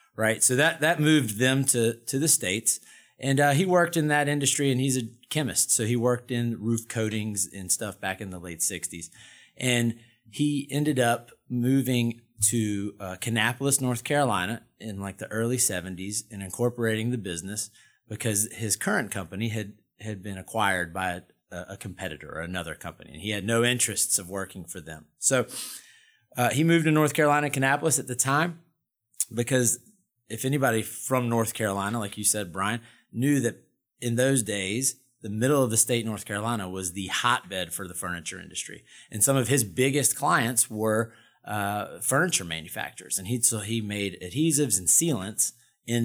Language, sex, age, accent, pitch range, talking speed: English, male, 30-49, American, 100-125 Hz, 175 wpm